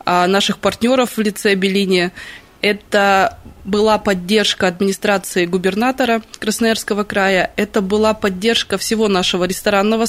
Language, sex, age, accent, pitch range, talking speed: Russian, female, 20-39, native, 195-235 Hz, 105 wpm